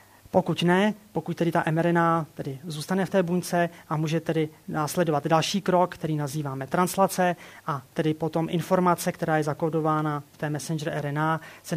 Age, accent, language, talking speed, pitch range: 30-49, native, Czech, 165 wpm, 150-170 Hz